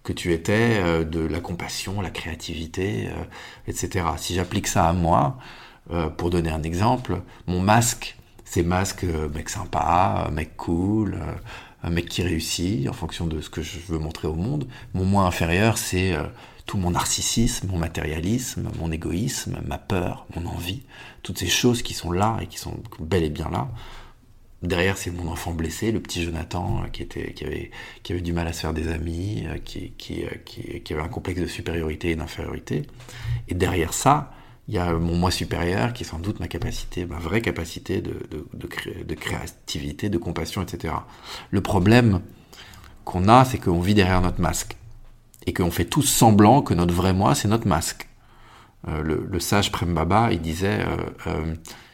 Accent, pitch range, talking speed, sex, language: French, 85-110 Hz, 170 wpm, male, French